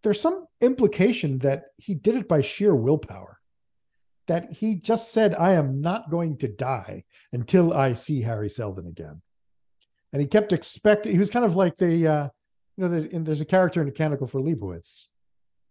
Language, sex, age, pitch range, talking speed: English, male, 50-69, 115-160 Hz, 185 wpm